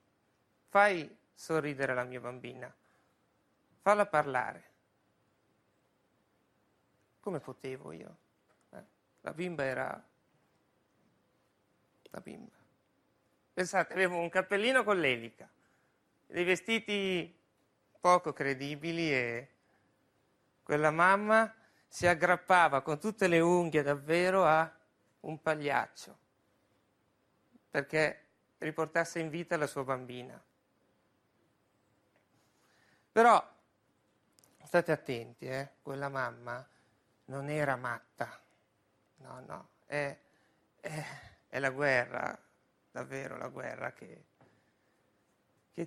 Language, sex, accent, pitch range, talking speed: Italian, male, native, 130-175 Hz, 85 wpm